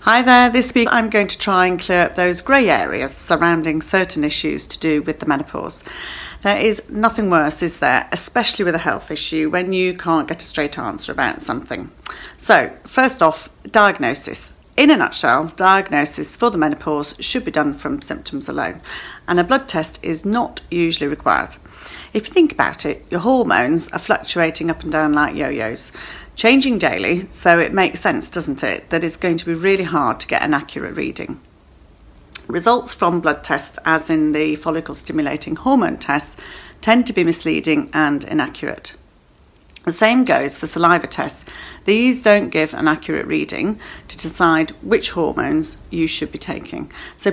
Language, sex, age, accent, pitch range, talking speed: English, female, 40-59, British, 155-225 Hz, 175 wpm